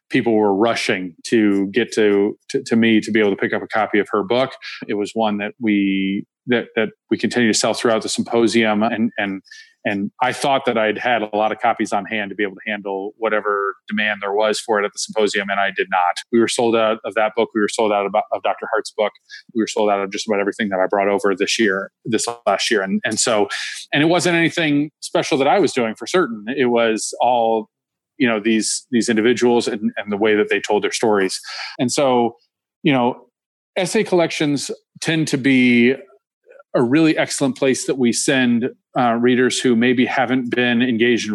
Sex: male